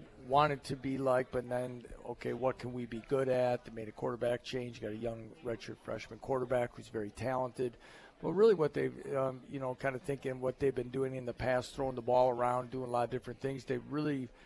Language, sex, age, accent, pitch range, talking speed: English, male, 50-69, American, 120-135 Hz, 235 wpm